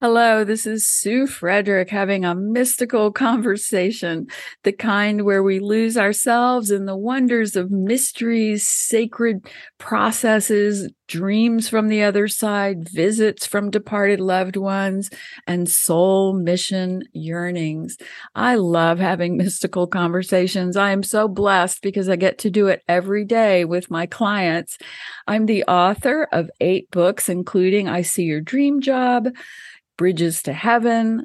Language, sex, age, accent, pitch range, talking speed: English, female, 50-69, American, 175-215 Hz, 135 wpm